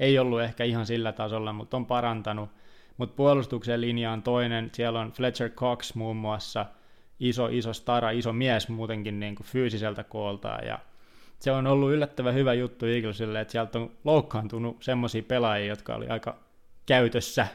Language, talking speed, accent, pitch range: Finnish, 165 wpm, native, 115-125 Hz